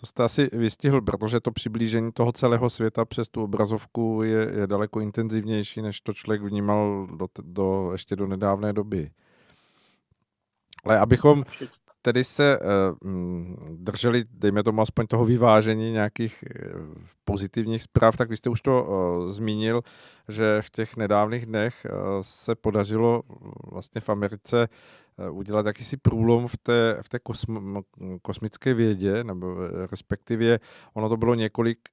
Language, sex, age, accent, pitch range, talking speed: Czech, male, 50-69, native, 100-115 Hz, 130 wpm